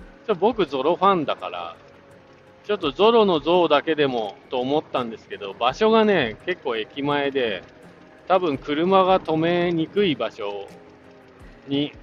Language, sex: Japanese, male